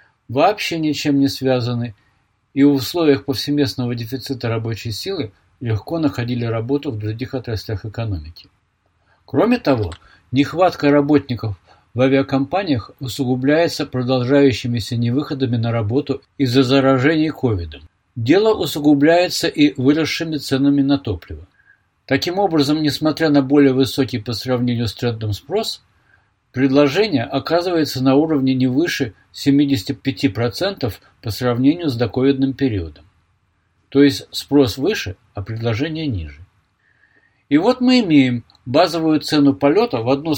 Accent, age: native, 50-69